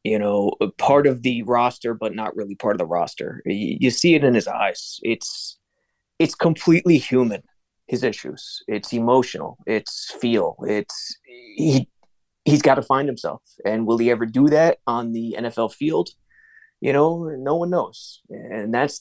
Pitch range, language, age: 120-155 Hz, English, 20-39